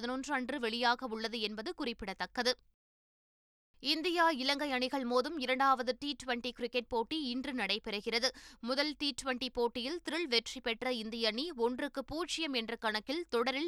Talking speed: 135 wpm